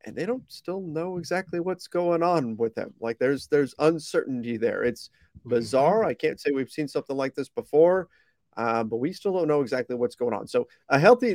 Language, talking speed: English, 210 wpm